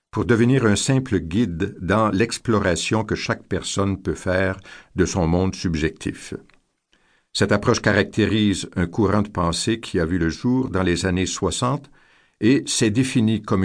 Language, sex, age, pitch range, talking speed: French, male, 60-79, 95-120 Hz, 160 wpm